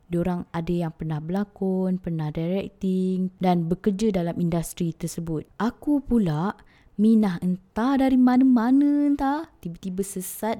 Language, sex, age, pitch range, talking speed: Indonesian, female, 20-39, 165-210 Hz, 125 wpm